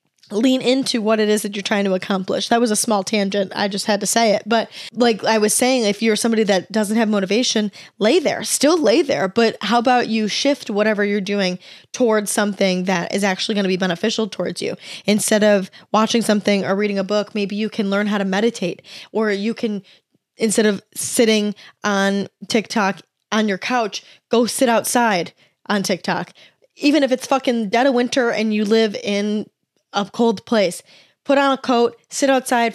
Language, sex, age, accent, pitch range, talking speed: English, female, 10-29, American, 195-230 Hz, 200 wpm